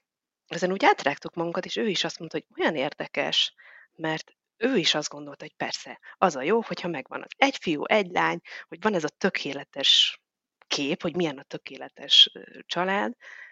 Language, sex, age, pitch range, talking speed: Hungarian, female, 30-49, 155-190 Hz, 175 wpm